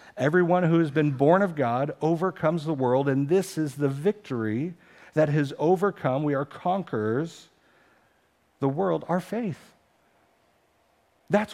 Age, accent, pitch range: 50-69, American, 110-150 Hz